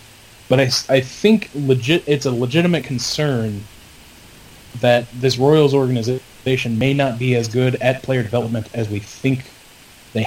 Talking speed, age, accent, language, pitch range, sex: 145 wpm, 20-39, American, English, 110-130 Hz, male